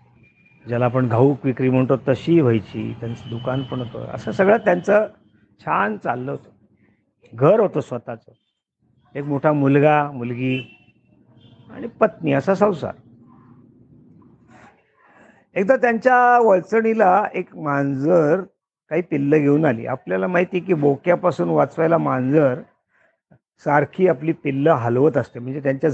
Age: 50-69